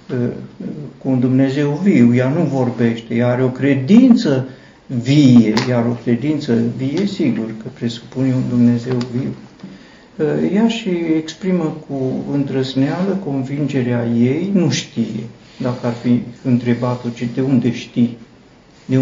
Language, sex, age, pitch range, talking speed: Romanian, male, 50-69, 120-155 Hz, 125 wpm